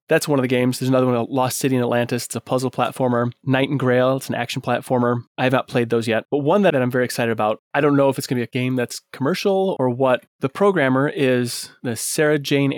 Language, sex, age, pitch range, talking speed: English, male, 30-49, 115-135 Hz, 265 wpm